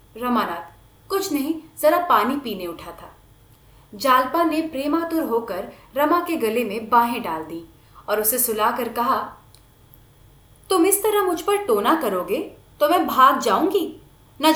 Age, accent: 30-49, native